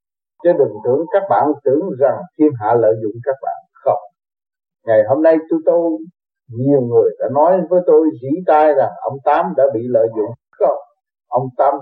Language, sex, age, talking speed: Vietnamese, male, 60-79, 190 wpm